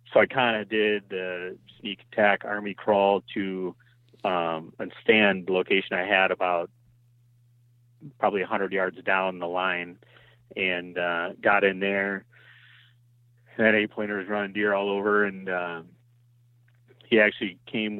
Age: 30-49